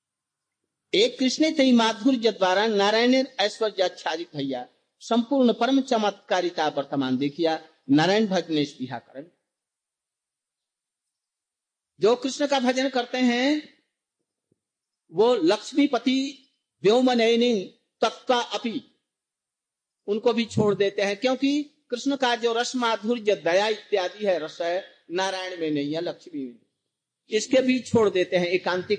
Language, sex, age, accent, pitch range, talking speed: Hindi, male, 50-69, native, 180-260 Hz, 115 wpm